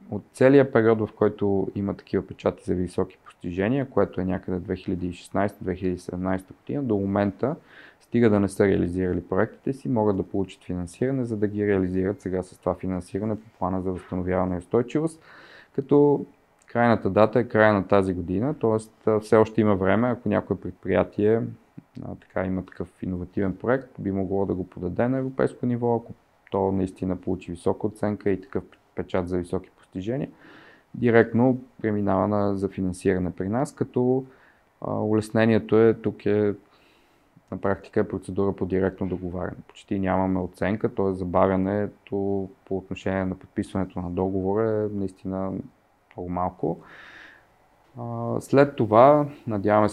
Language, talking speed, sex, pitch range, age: Bulgarian, 145 wpm, male, 95-110 Hz, 20-39